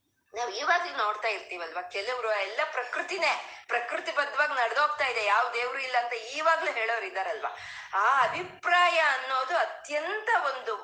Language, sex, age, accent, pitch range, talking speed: Kannada, female, 20-39, native, 215-315 Hz, 120 wpm